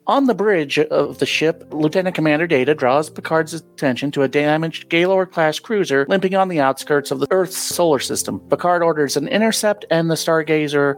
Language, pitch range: English, 135-165 Hz